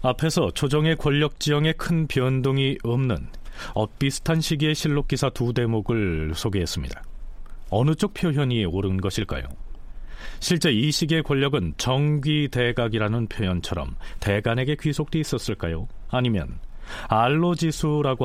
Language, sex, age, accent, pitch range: Korean, male, 40-59, native, 100-150 Hz